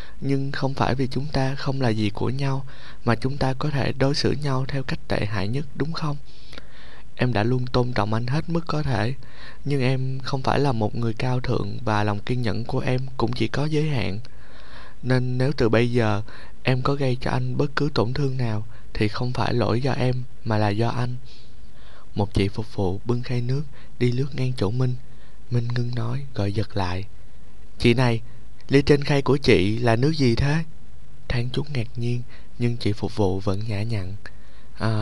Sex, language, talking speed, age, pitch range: male, Vietnamese, 210 wpm, 20-39, 110-130 Hz